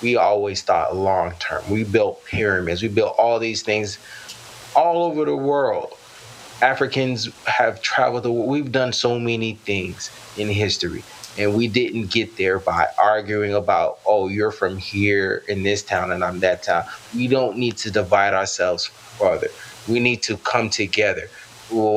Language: English